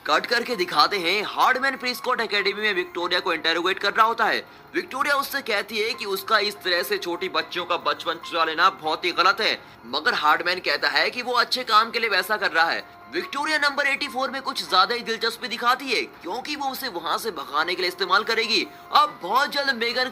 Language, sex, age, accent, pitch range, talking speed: English, male, 20-39, Indian, 210-270 Hz, 210 wpm